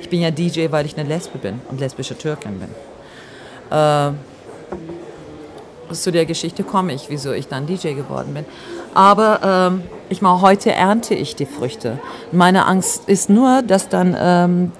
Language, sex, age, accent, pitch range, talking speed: German, female, 40-59, German, 160-190 Hz, 165 wpm